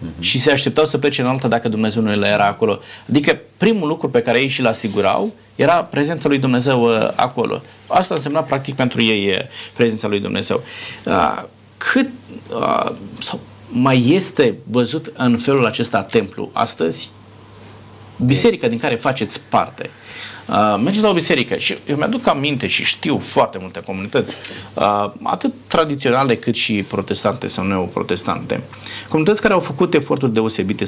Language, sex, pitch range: Romanian, male, 105-145 Hz